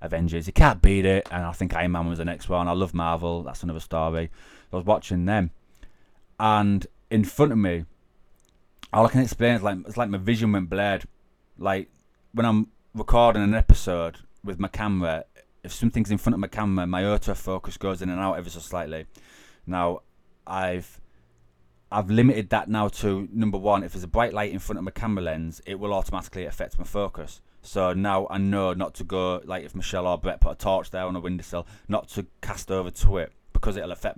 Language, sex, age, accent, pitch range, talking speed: English, male, 20-39, British, 85-105 Hz, 210 wpm